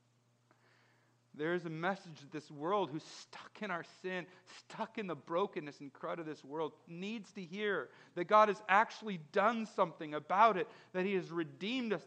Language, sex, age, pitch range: English, male, 40-59, 135-220 Hz